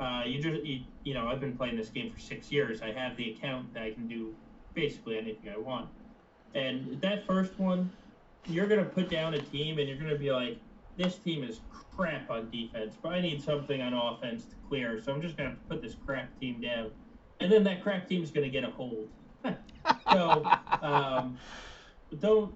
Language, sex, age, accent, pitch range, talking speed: English, male, 20-39, American, 130-190 Hz, 210 wpm